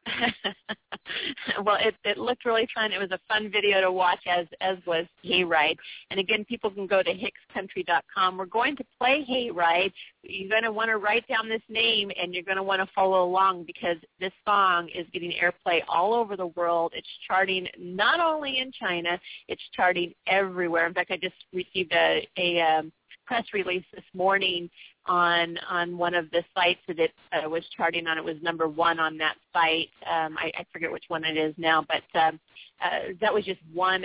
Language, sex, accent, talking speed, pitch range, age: English, female, American, 195 wpm, 170-200 Hz, 30-49